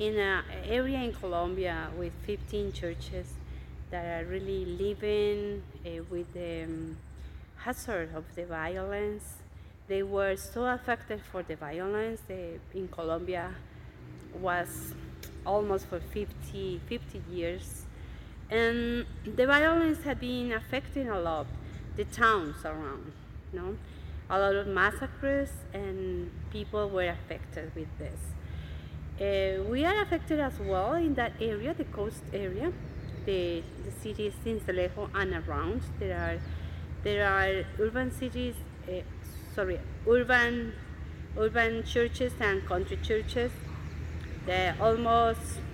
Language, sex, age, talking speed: English, female, 30-49, 120 wpm